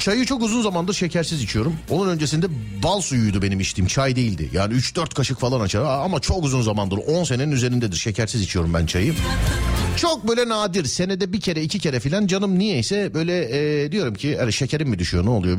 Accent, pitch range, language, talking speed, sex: native, 100-160 Hz, Turkish, 195 wpm, male